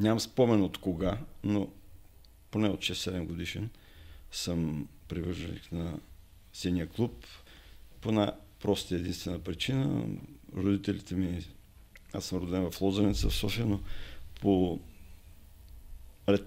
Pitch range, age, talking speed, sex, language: 85-100 Hz, 50-69, 110 wpm, male, Bulgarian